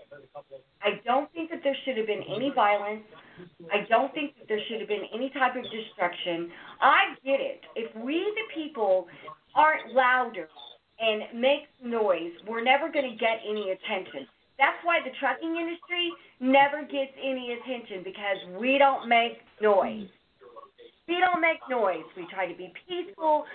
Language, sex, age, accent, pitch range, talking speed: English, female, 40-59, American, 205-325 Hz, 165 wpm